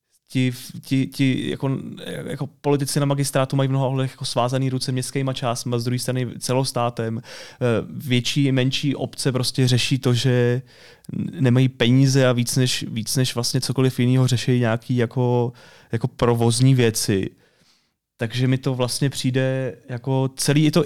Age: 30-49